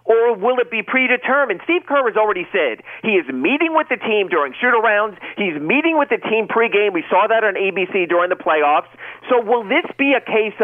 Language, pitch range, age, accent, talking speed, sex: English, 195-275 Hz, 40-59, American, 215 wpm, male